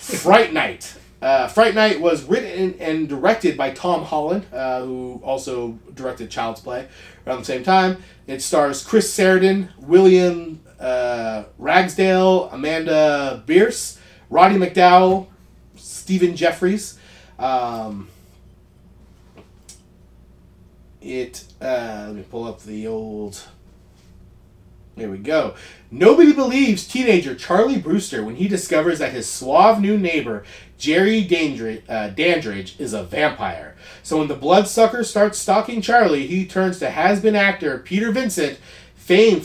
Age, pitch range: 30-49, 110-190 Hz